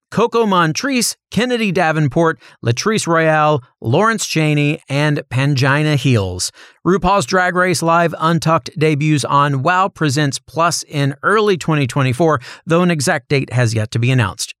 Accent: American